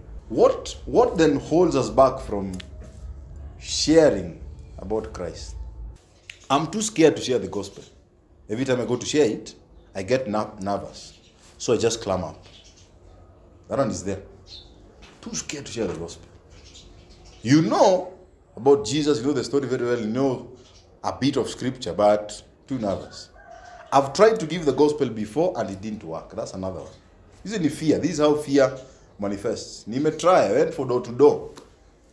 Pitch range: 95-150 Hz